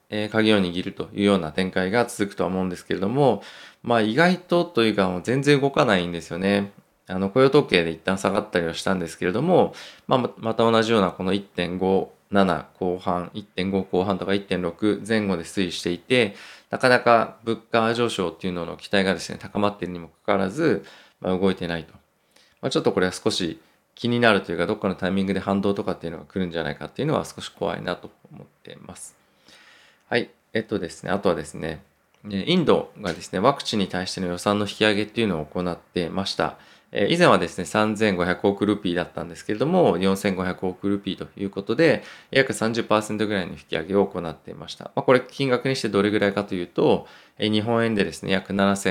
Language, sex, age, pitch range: Japanese, male, 20-39, 90-110 Hz